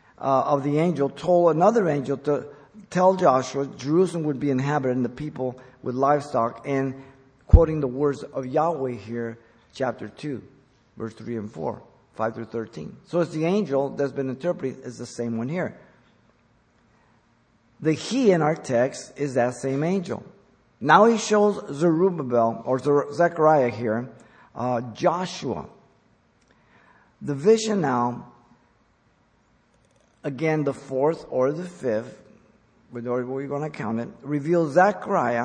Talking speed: 135 wpm